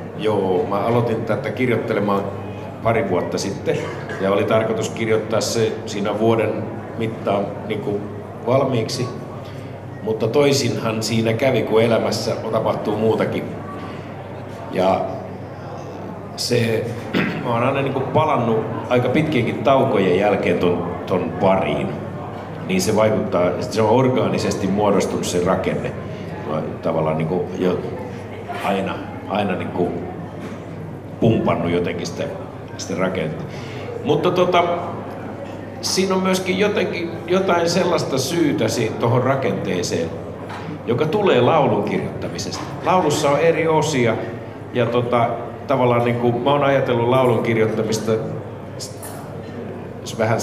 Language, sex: Finnish, male